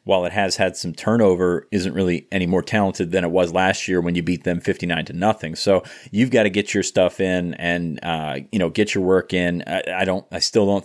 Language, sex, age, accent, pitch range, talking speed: English, male, 30-49, American, 90-100 Hz, 250 wpm